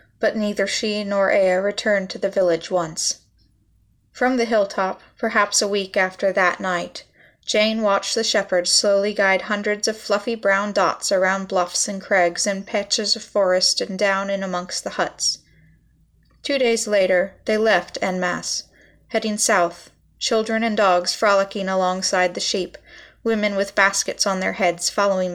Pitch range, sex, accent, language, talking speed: 180-210 Hz, female, American, English, 160 wpm